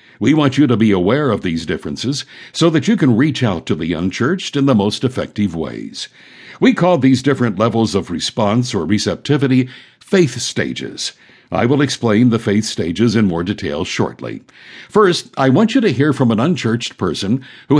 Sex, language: male, English